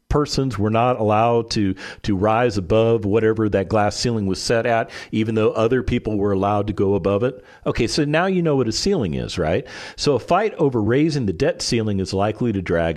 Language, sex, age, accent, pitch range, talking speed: English, male, 50-69, American, 110-165 Hz, 215 wpm